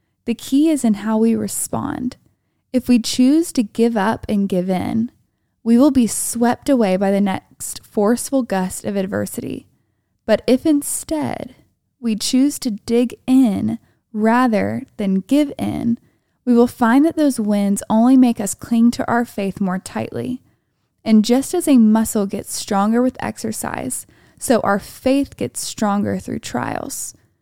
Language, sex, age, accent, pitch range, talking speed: English, female, 10-29, American, 210-255 Hz, 155 wpm